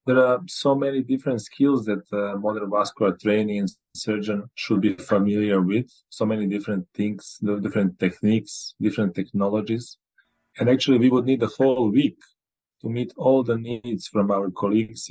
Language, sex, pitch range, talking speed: English, male, 100-115 Hz, 165 wpm